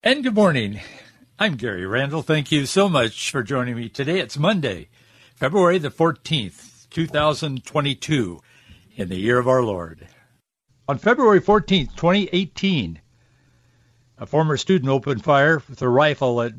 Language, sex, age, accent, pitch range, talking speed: English, male, 60-79, American, 120-150 Hz, 140 wpm